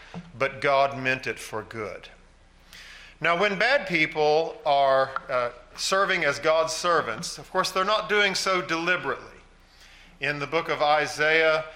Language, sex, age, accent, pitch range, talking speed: English, male, 50-69, American, 135-175 Hz, 145 wpm